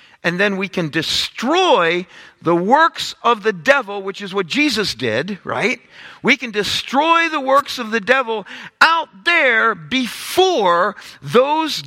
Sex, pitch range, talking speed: male, 155-235 Hz, 140 wpm